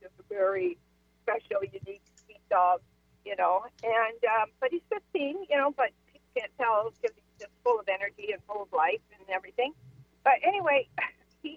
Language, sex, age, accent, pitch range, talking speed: English, female, 50-69, American, 185-285 Hz, 180 wpm